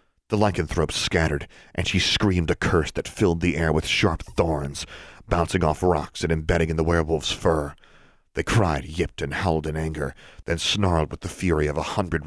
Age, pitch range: 40-59, 80-95 Hz